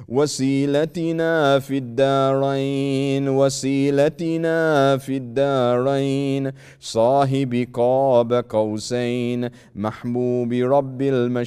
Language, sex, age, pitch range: English, male, 30-49, 120-140 Hz